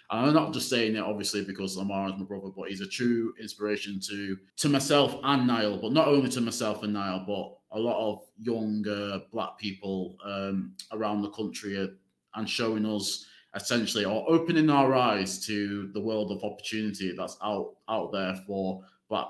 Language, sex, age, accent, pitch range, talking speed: English, male, 20-39, British, 110-145 Hz, 190 wpm